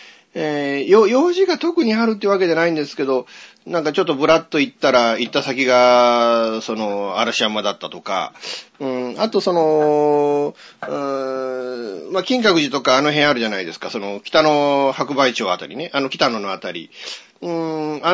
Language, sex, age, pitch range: Japanese, male, 40-59, 115-180 Hz